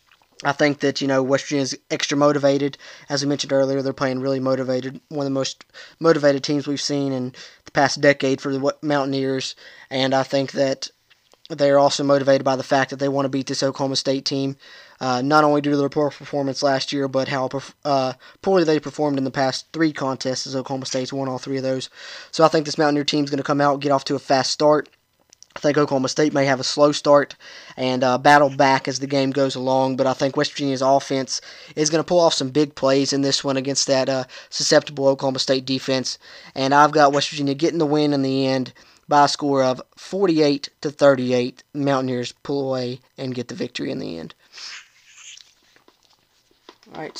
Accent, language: American, English